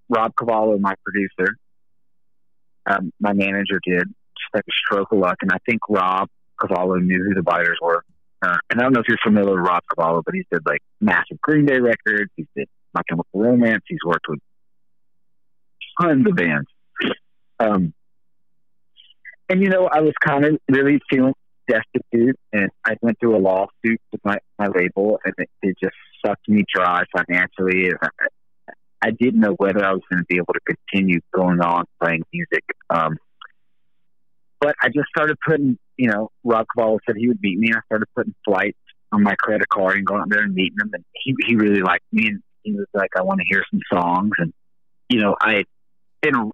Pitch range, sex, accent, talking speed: 90-120 Hz, male, American, 190 wpm